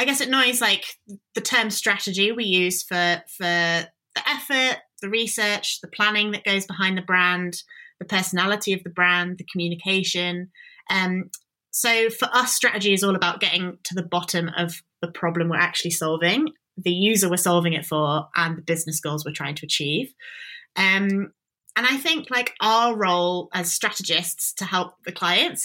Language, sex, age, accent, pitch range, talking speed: English, female, 20-39, British, 170-210 Hz, 175 wpm